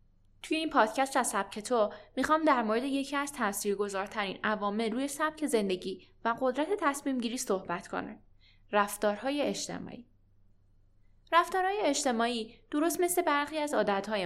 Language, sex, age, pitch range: Persian, female, 10-29, 200-280 Hz